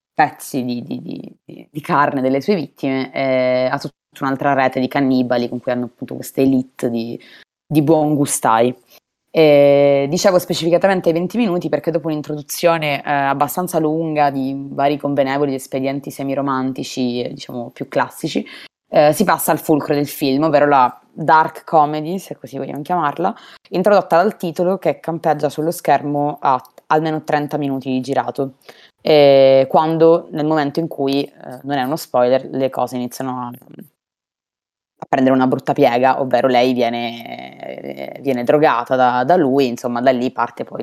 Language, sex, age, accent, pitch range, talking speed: Italian, female, 20-39, native, 130-155 Hz, 155 wpm